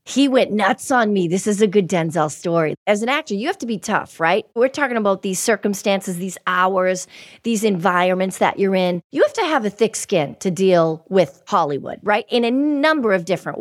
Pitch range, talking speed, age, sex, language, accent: 170-220 Hz, 215 wpm, 40-59, female, English, American